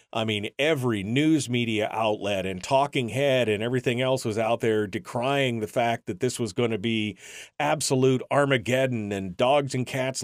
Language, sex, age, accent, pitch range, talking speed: English, male, 40-59, American, 115-155 Hz, 175 wpm